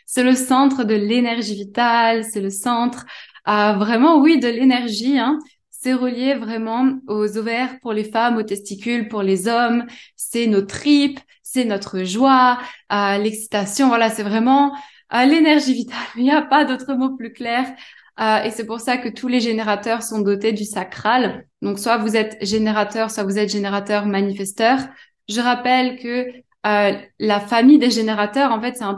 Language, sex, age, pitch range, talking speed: Spanish, female, 20-39, 210-255 Hz, 175 wpm